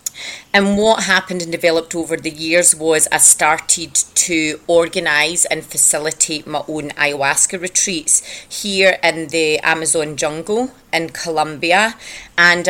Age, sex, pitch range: 30-49, female, 160-190 Hz